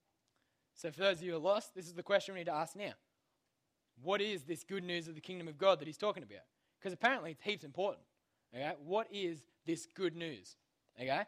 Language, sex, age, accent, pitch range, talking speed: English, male, 20-39, Australian, 155-195 Hz, 235 wpm